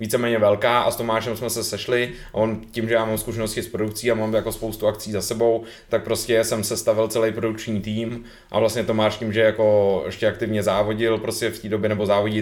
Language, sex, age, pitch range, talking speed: Czech, male, 20-39, 105-115 Hz, 220 wpm